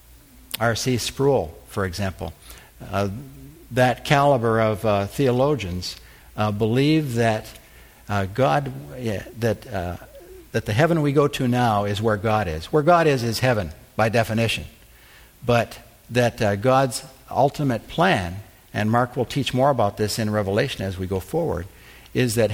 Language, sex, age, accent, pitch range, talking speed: English, male, 60-79, American, 105-140 Hz, 150 wpm